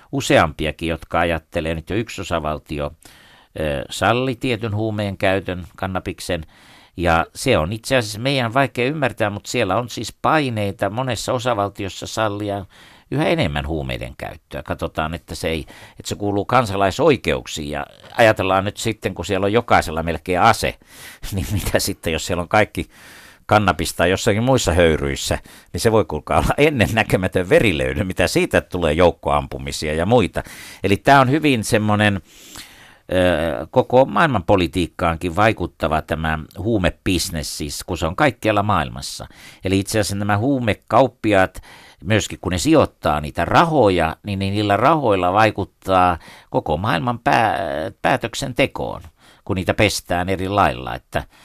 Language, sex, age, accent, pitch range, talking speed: Finnish, male, 60-79, native, 85-110 Hz, 135 wpm